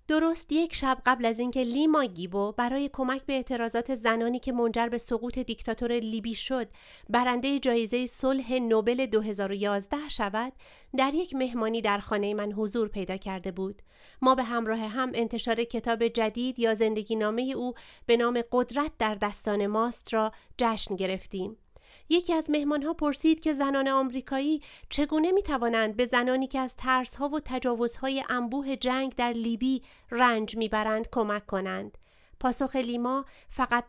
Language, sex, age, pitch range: Persian, female, 30-49, 215-260 Hz